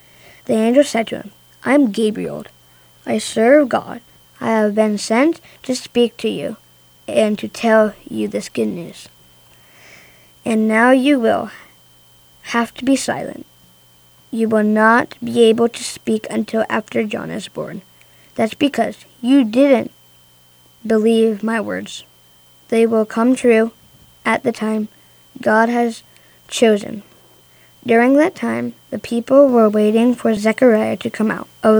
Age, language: 20-39, Korean